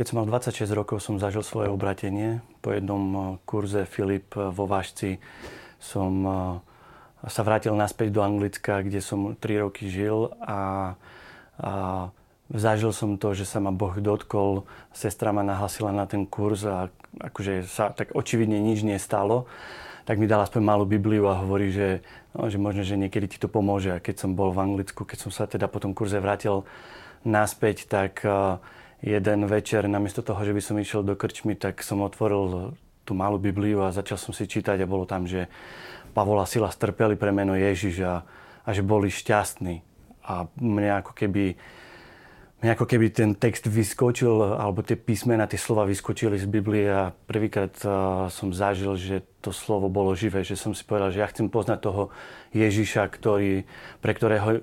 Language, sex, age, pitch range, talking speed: Slovak, male, 30-49, 100-110 Hz, 175 wpm